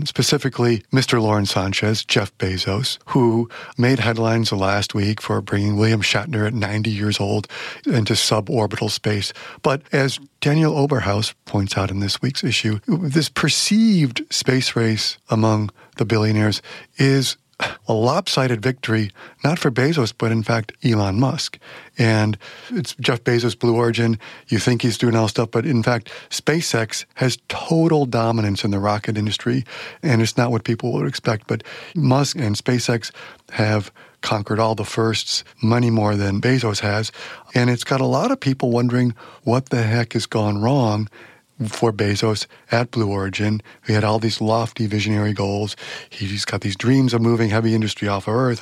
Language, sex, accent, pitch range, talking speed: English, male, American, 105-125 Hz, 165 wpm